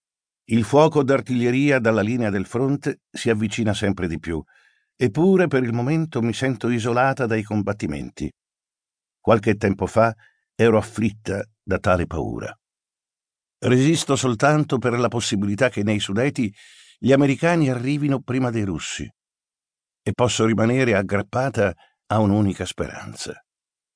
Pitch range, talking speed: 105-130 Hz, 125 wpm